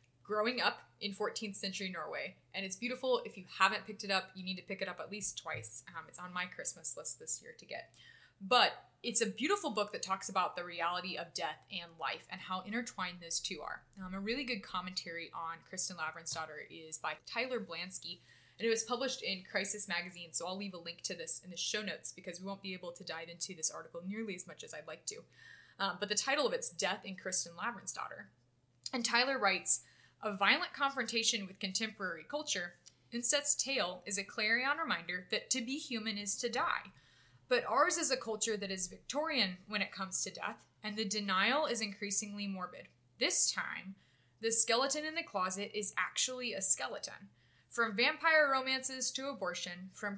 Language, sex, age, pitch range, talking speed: English, female, 20-39, 185-240 Hz, 205 wpm